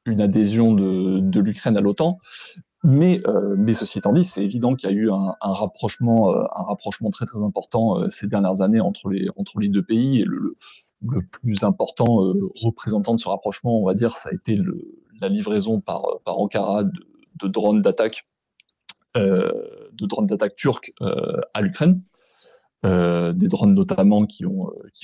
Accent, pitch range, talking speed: French, 100-130 Hz, 165 wpm